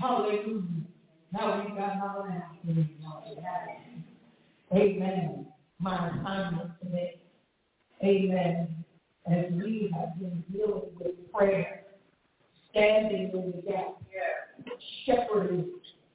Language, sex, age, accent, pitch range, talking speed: English, female, 40-59, American, 180-225 Hz, 85 wpm